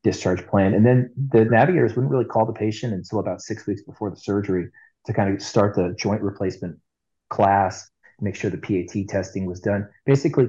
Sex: male